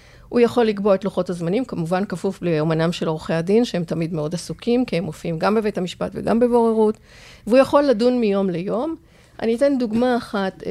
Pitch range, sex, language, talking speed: 180-245 Hz, female, Hebrew, 185 wpm